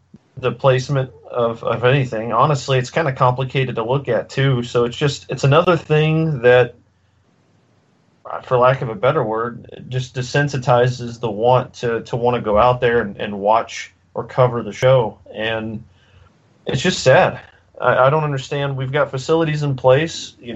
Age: 30-49